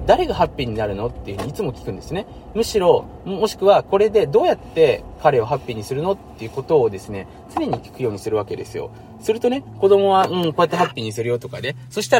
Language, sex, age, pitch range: Japanese, male, 20-39, 115-175 Hz